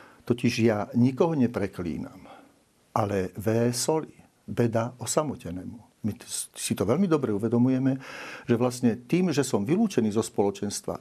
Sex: male